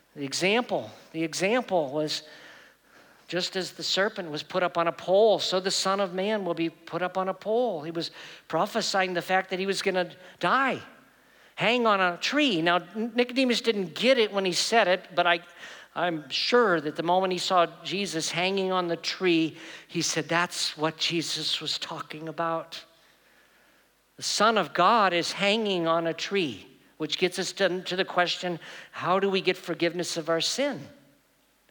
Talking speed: 180 wpm